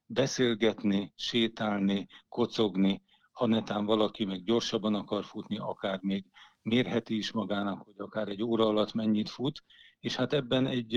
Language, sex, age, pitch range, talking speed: Hungarian, male, 50-69, 105-115 Hz, 140 wpm